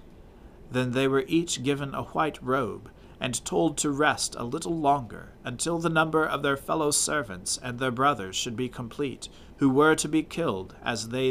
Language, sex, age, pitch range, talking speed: English, male, 40-59, 115-145 Hz, 185 wpm